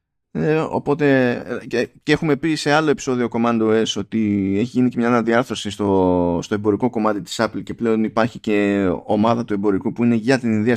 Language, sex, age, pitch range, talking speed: Greek, male, 20-39, 110-135 Hz, 195 wpm